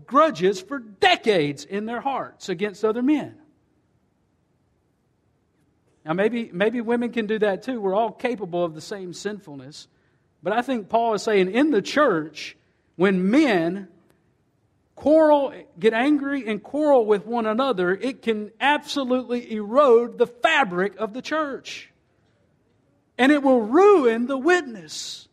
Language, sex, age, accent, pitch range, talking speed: English, male, 50-69, American, 170-230 Hz, 135 wpm